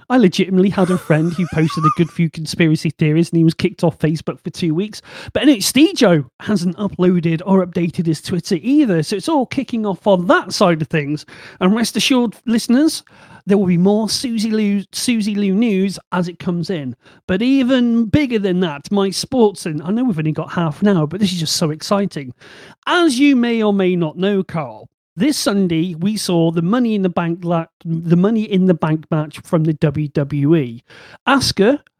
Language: English